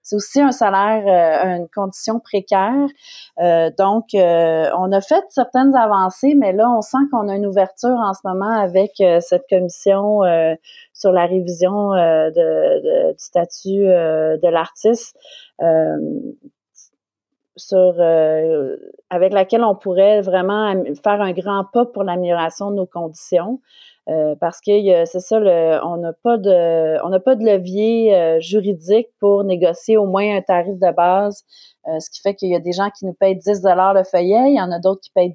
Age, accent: 30-49, Canadian